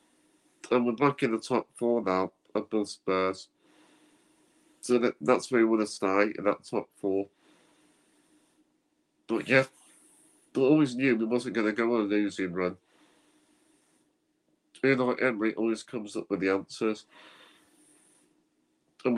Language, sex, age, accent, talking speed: English, male, 50-69, British, 145 wpm